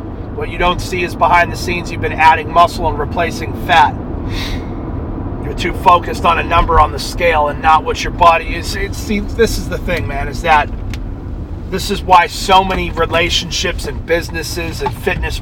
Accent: American